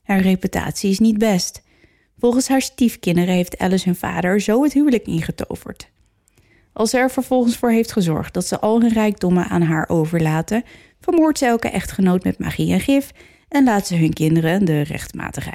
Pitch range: 170-220 Hz